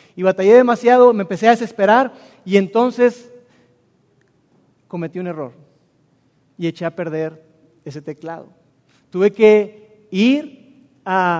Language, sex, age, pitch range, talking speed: Spanish, male, 40-59, 185-240 Hz, 115 wpm